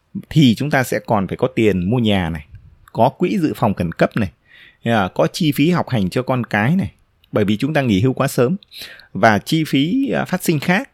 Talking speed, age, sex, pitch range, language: 225 wpm, 20-39, male, 100-135 Hz, Vietnamese